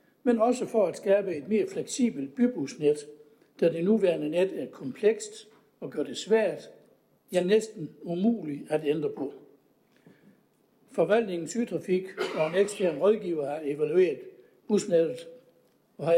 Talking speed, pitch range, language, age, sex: 135 wpm, 155-215 Hz, Danish, 60-79, male